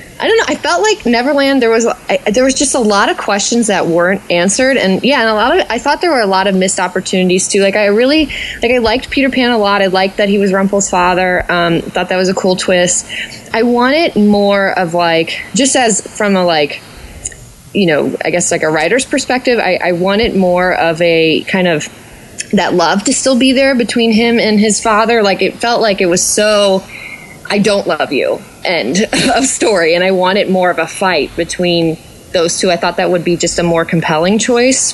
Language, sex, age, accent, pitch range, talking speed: English, female, 20-39, American, 175-230 Hz, 225 wpm